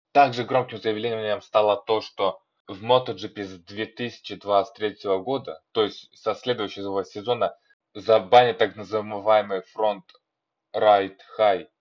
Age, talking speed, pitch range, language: 20-39, 100 wpm, 100-120 Hz, Russian